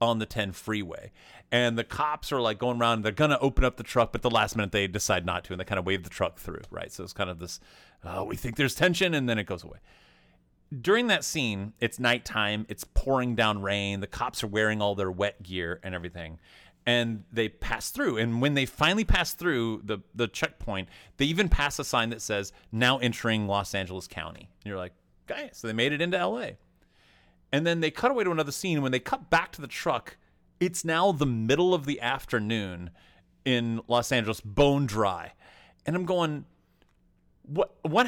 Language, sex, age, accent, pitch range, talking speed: English, male, 30-49, American, 100-145 Hz, 215 wpm